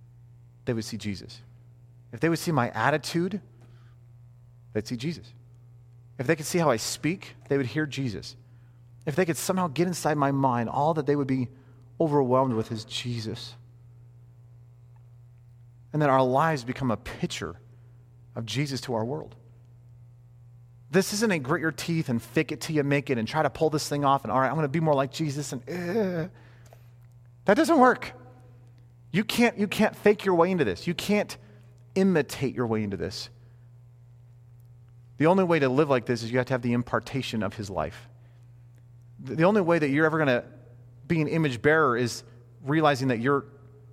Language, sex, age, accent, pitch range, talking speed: English, male, 30-49, American, 120-155 Hz, 185 wpm